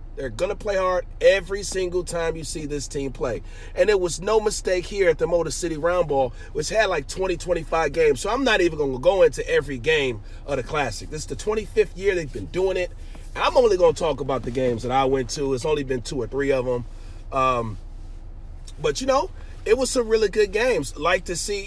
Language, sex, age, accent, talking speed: English, male, 30-49, American, 240 wpm